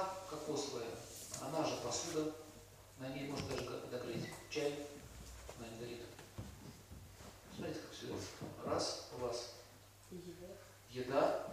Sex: male